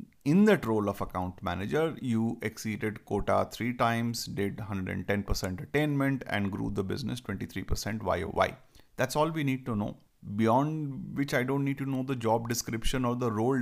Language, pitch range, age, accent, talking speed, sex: English, 100-125 Hz, 30-49, Indian, 170 wpm, male